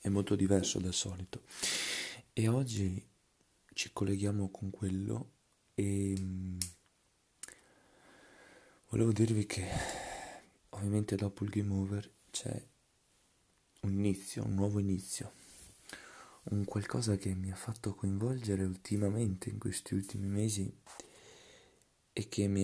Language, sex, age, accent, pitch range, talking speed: Italian, male, 20-39, native, 95-110 Hz, 110 wpm